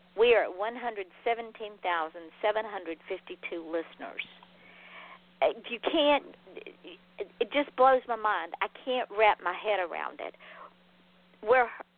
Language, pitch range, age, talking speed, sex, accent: English, 185-245 Hz, 50-69, 125 wpm, female, American